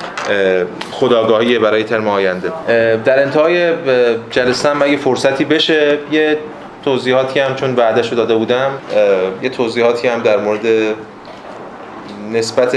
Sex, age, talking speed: male, 20-39, 115 wpm